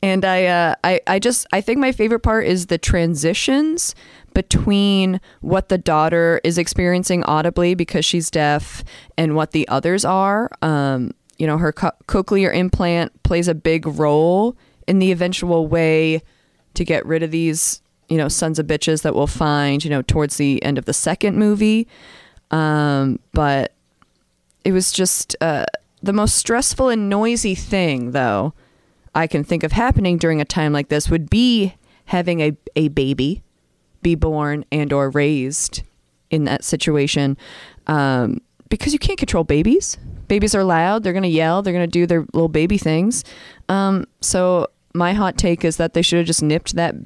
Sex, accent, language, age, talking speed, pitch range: female, American, English, 20-39, 175 wpm, 145-185 Hz